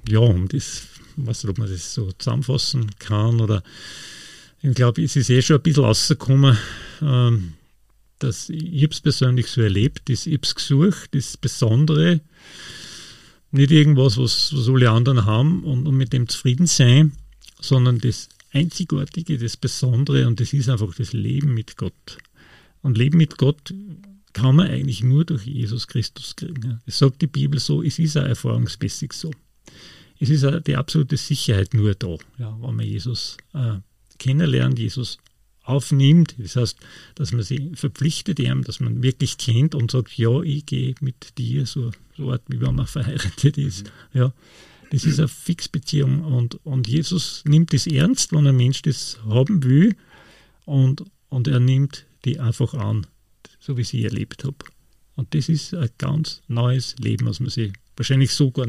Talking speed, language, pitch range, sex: 165 wpm, German, 120-145 Hz, male